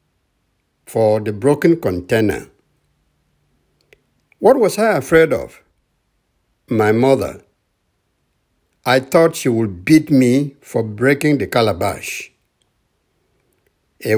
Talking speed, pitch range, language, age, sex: 95 wpm, 115-155 Hz, English, 60-79, male